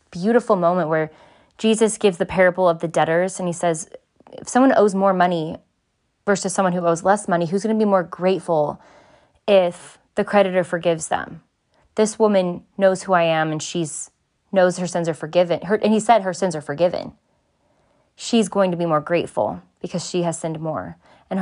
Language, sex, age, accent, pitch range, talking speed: English, female, 20-39, American, 170-205 Hz, 190 wpm